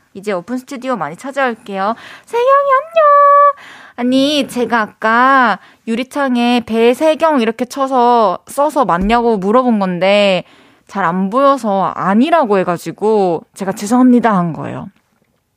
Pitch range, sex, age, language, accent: 200-275 Hz, female, 20-39, Korean, native